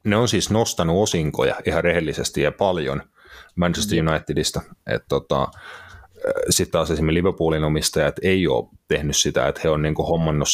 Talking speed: 150 wpm